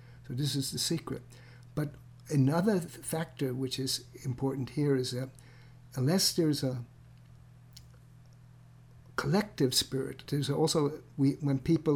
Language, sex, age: English, male, 60-79